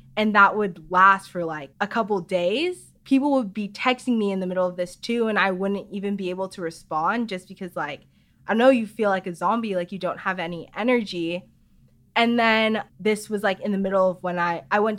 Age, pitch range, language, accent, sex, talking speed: 20-39, 180-220 Hz, English, American, female, 230 wpm